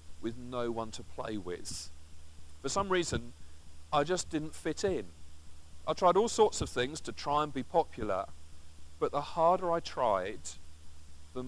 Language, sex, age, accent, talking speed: English, male, 40-59, British, 160 wpm